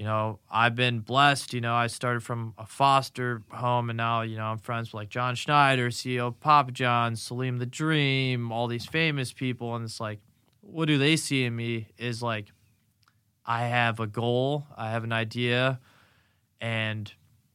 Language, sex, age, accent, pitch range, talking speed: English, male, 20-39, American, 110-130 Hz, 185 wpm